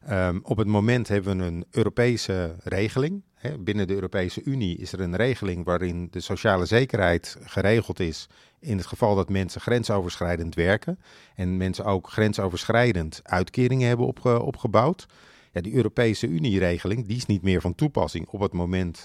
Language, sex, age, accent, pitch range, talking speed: Dutch, male, 50-69, Dutch, 90-115 Hz, 150 wpm